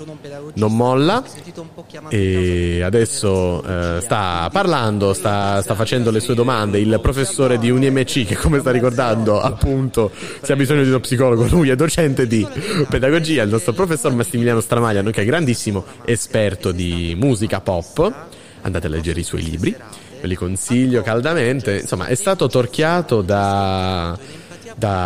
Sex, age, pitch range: male, 30-49, 90-125 Hz